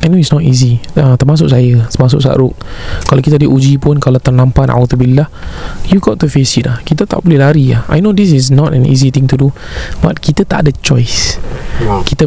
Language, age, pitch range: Malay, 20-39, 130-160 Hz